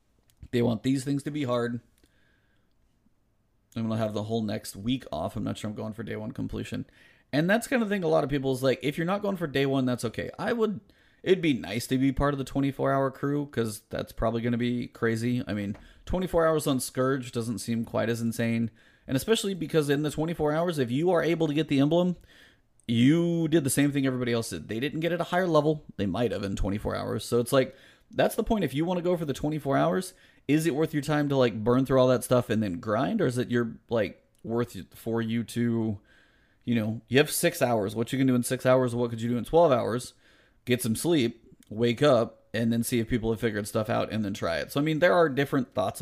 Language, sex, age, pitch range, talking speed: English, male, 30-49, 115-145 Hz, 260 wpm